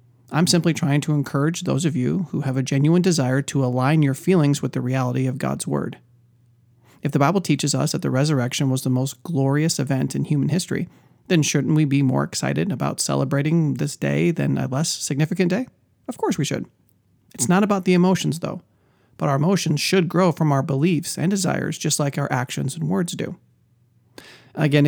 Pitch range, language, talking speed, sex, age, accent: 130-160 Hz, English, 200 wpm, male, 30-49, American